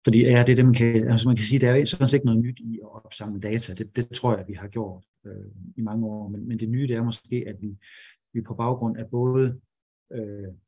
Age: 30-49